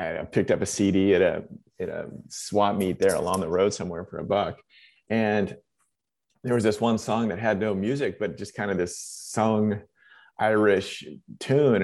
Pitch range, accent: 105-125 Hz, American